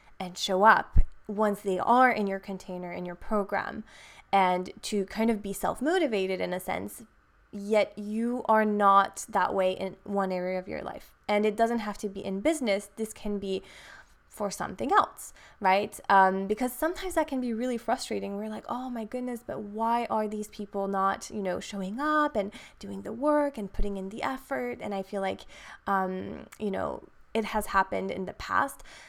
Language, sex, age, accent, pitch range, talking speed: English, female, 20-39, American, 195-230 Hz, 190 wpm